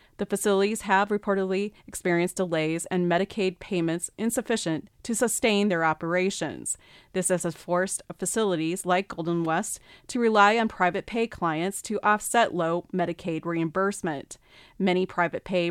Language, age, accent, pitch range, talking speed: English, 30-49, American, 170-205 Hz, 130 wpm